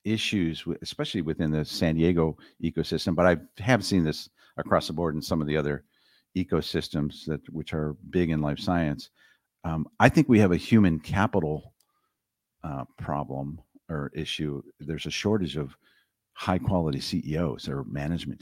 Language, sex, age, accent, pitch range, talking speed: English, male, 50-69, American, 75-95 Hz, 160 wpm